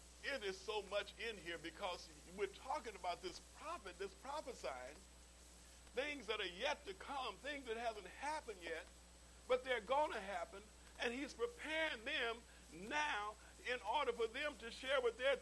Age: 50-69